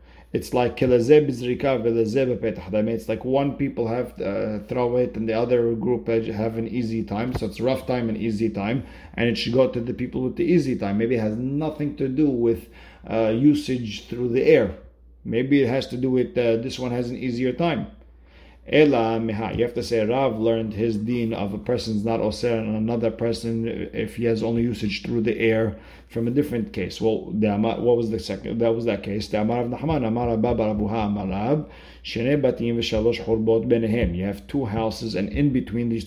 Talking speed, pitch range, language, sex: 180 wpm, 110-120 Hz, English, male